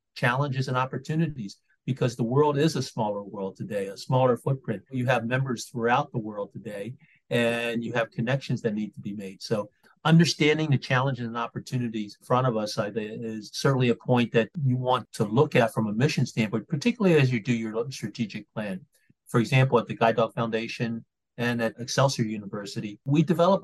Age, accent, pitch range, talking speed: 40-59, American, 110-135 Hz, 190 wpm